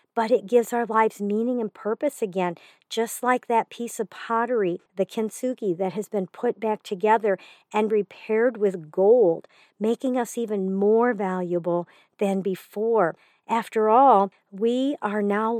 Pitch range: 195-230 Hz